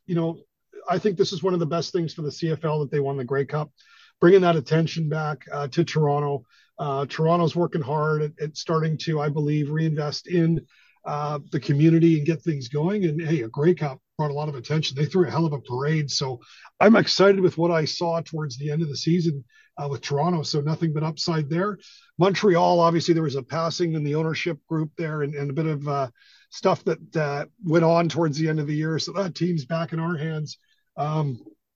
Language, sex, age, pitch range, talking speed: English, male, 40-59, 145-170 Hz, 225 wpm